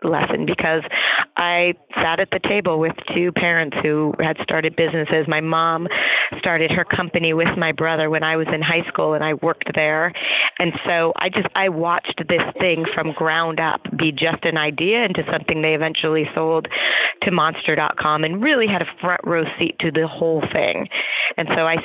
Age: 30-49